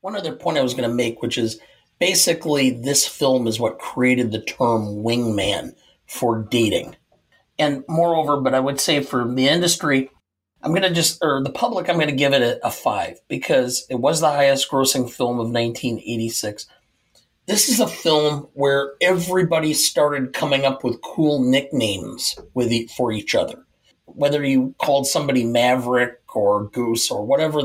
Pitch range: 125-150 Hz